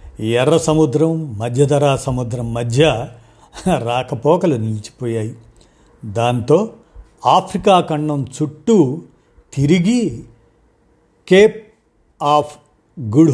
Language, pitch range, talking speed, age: Telugu, 120-155 Hz, 65 wpm, 50-69